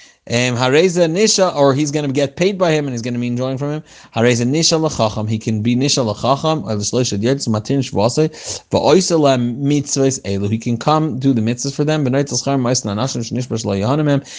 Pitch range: 120-160 Hz